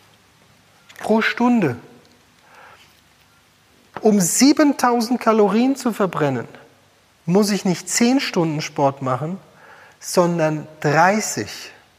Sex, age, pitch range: male, 40-59, 160-230 Hz